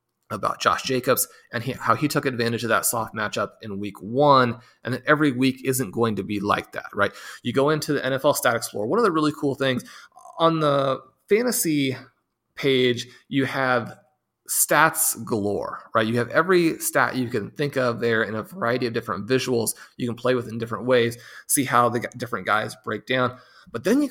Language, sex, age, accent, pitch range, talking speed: English, male, 30-49, American, 115-135 Hz, 195 wpm